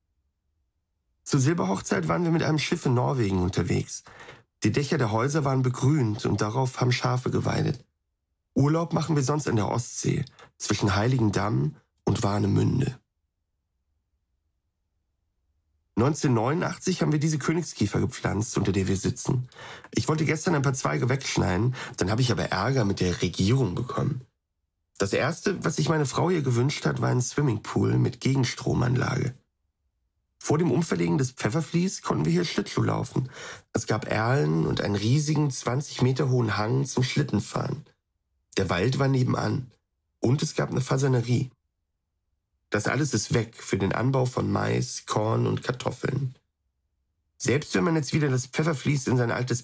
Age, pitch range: 40-59, 90-140 Hz